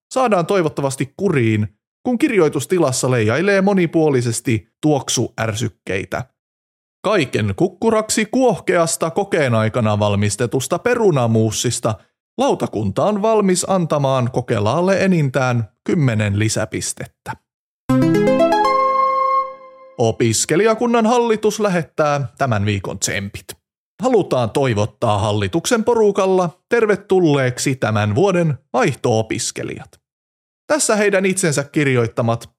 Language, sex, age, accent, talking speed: Finnish, male, 30-49, native, 75 wpm